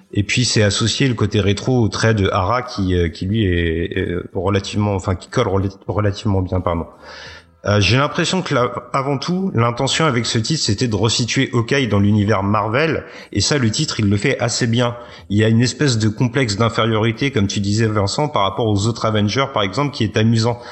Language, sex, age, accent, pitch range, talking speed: French, male, 30-49, French, 100-125 Hz, 205 wpm